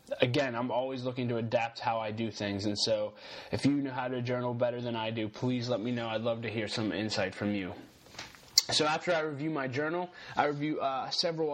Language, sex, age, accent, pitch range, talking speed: English, male, 20-39, American, 120-140 Hz, 230 wpm